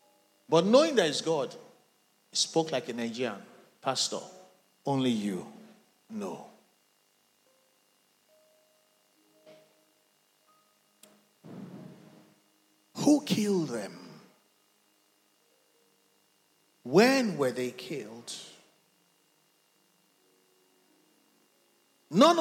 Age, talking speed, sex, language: 50-69, 55 wpm, male, English